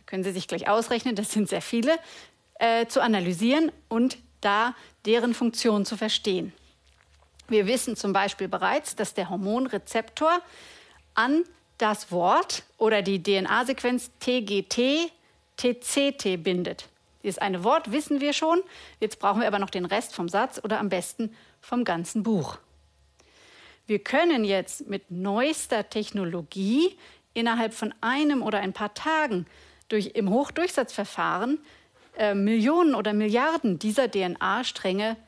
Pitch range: 200-260 Hz